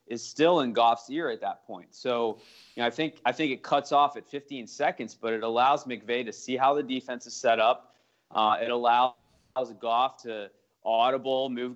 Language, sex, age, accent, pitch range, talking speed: English, male, 30-49, American, 110-130 Hz, 205 wpm